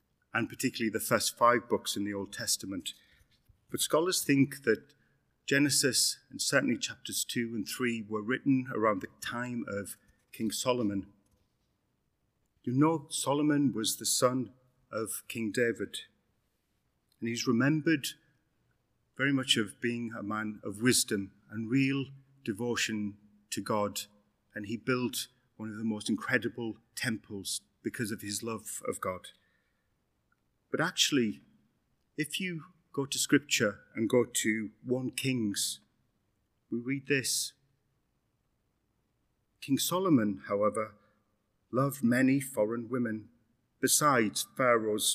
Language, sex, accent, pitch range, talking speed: English, male, British, 110-130 Hz, 125 wpm